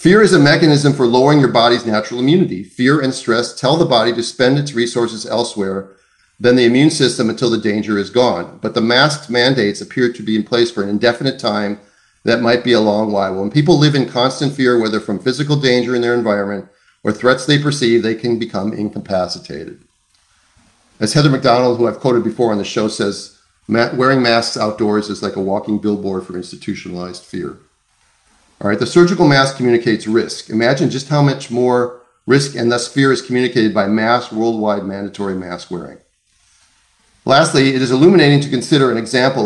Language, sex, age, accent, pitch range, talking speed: English, male, 40-59, American, 110-135 Hz, 190 wpm